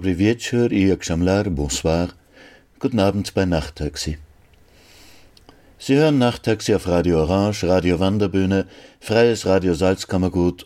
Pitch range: 85-105 Hz